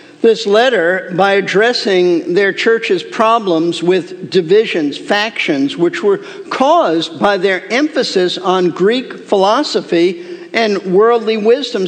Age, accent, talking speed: 50-69, American, 110 wpm